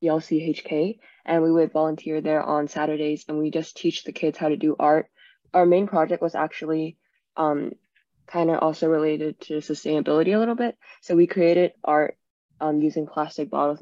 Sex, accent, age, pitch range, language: female, American, 10-29, 155-170 Hz, Chinese